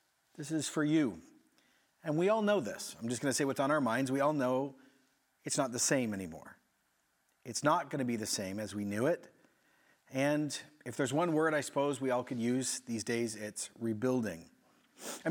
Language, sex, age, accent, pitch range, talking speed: English, male, 40-59, American, 125-155 Hz, 210 wpm